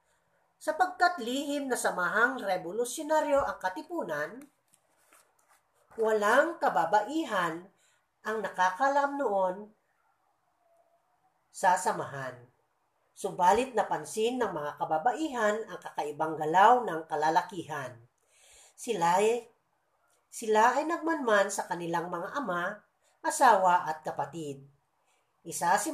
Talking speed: 90 wpm